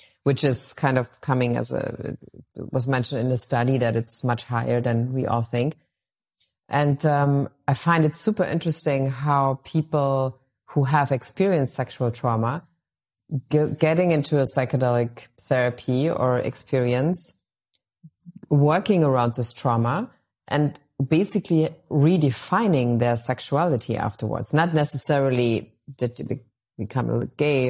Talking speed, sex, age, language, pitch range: 125 wpm, female, 30-49, English, 125-150 Hz